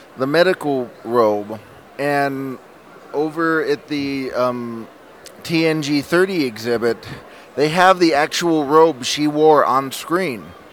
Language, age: English, 30-49